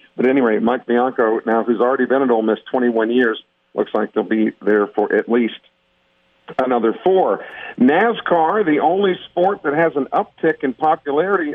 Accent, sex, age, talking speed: American, male, 50-69, 170 wpm